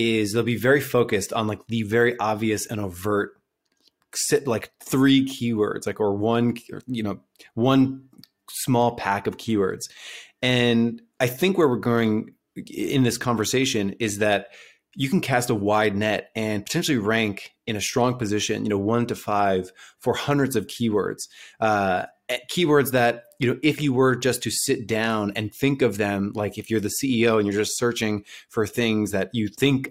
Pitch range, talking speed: 105-120 Hz, 180 wpm